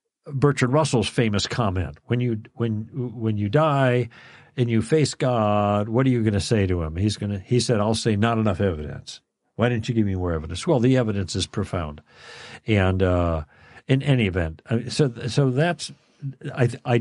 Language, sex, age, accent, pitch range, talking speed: English, male, 60-79, American, 100-130 Hz, 185 wpm